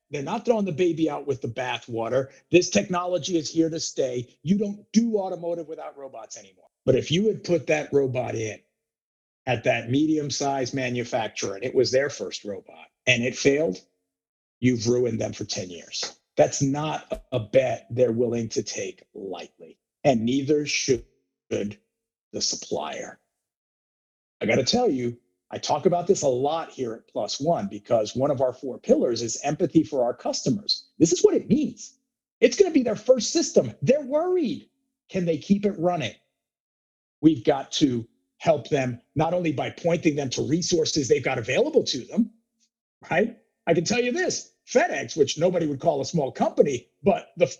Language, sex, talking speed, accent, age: English, male, 180 wpm, American, 50-69